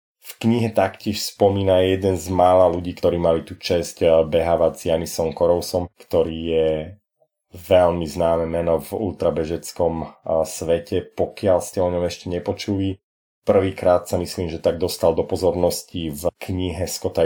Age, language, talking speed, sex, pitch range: 30-49, Slovak, 140 wpm, male, 80-90 Hz